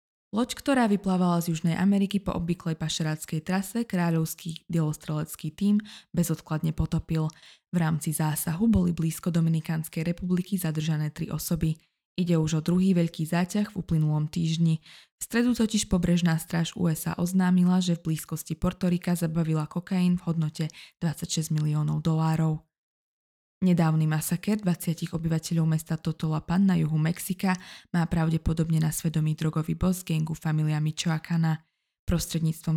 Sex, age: female, 20-39